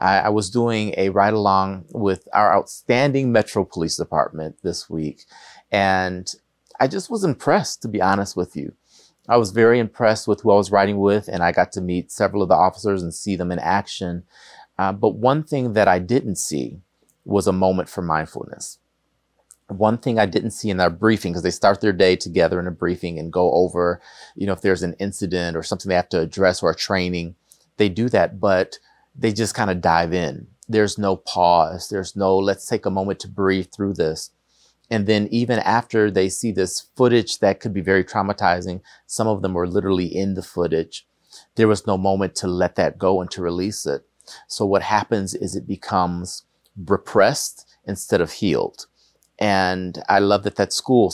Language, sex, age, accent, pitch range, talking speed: English, male, 30-49, American, 90-110 Hz, 195 wpm